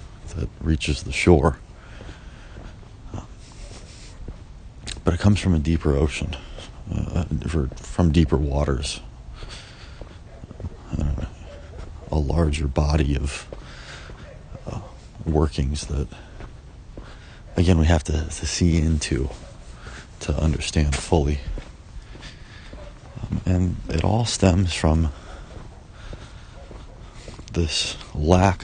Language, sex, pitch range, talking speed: English, male, 75-90 Hz, 90 wpm